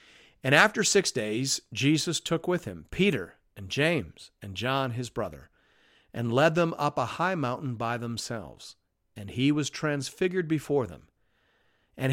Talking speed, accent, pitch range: 155 wpm, American, 115-155 Hz